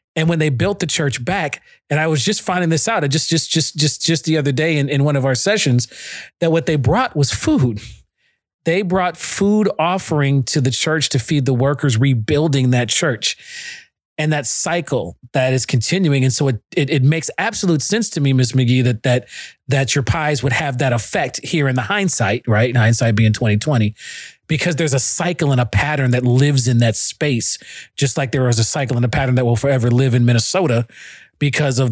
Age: 40-59